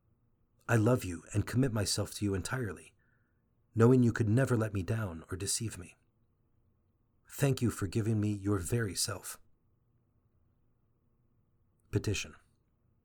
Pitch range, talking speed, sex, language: 105-120 Hz, 130 wpm, male, English